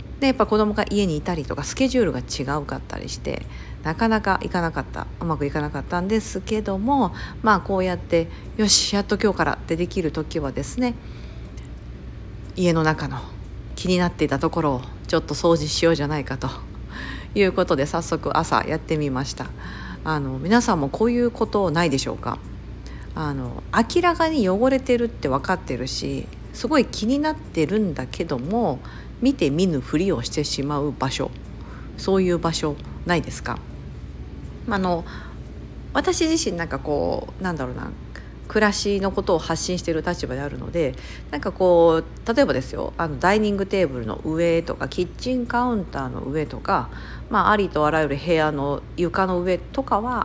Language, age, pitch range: Japanese, 50-69, 145-210 Hz